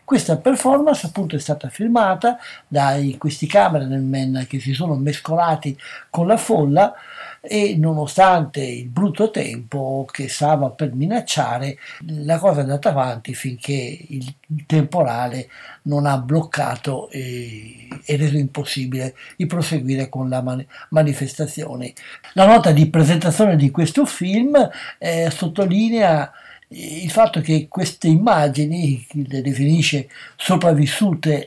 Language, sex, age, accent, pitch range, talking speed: Italian, male, 60-79, native, 140-185 Hz, 120 wpm